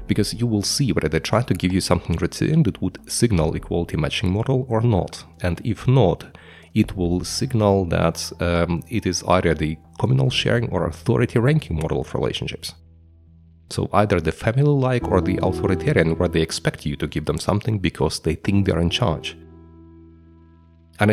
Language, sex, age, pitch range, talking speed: English, male, 30-49, 85-120 Hz, 180 wpm